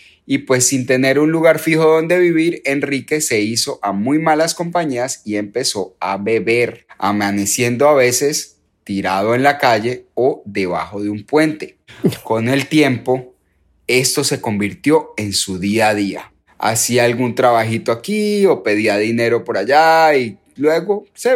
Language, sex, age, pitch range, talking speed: Spanish, male, 30-49, 110-155 Hz, 155 wpm